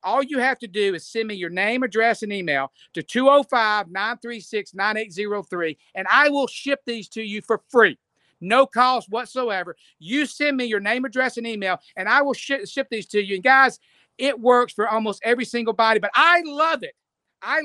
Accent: American